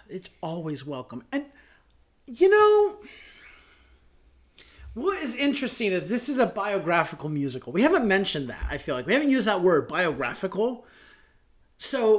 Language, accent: English, American